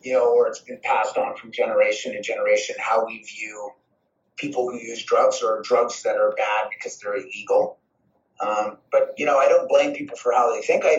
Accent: American